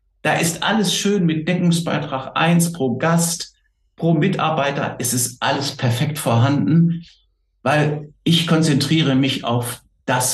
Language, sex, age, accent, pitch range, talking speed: German, male, 60-79, German, 125-180 Hz, 135 wpm